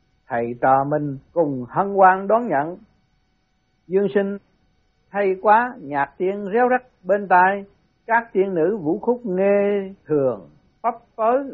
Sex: male